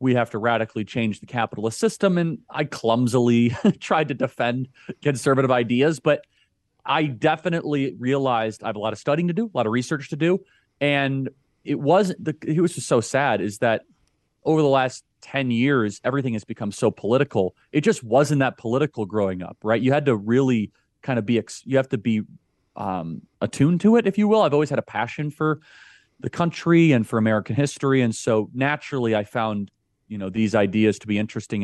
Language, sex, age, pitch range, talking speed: English, male, 30-49, 110-145 Hz, 200 wpm